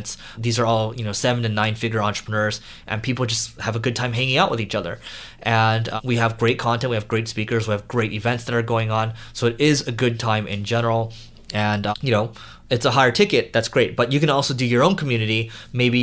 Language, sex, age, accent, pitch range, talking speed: English, male, 20-39, American, 110-130 Hz, 250 wpm